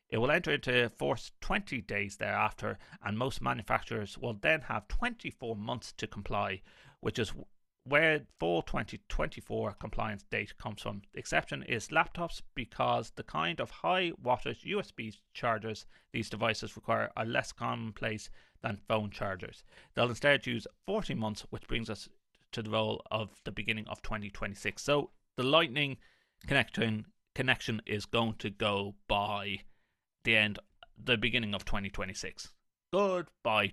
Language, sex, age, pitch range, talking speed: English, male, 30-49, 100-125 Hz, 145 wpm